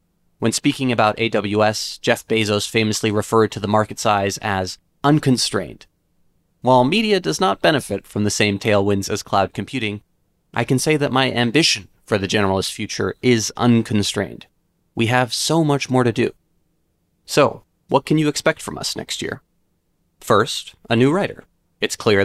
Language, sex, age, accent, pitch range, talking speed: English, male, 30-49, American, 100-125 Hz, 160 wpm